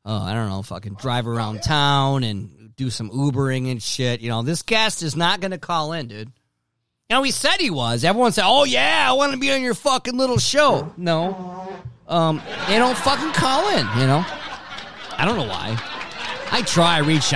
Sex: male